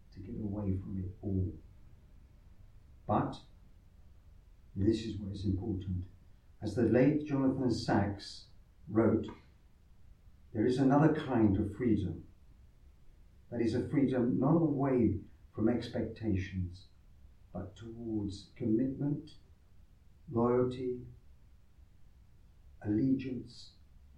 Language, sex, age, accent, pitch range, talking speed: English, male, 50-69, British, 90-115 Hz, 90 wpm